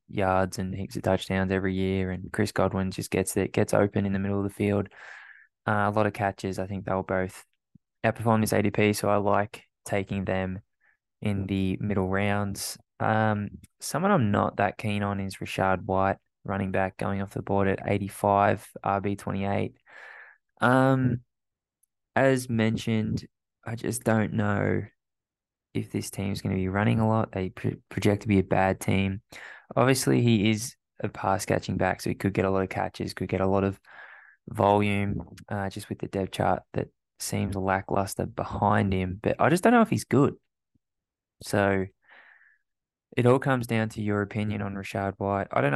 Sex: male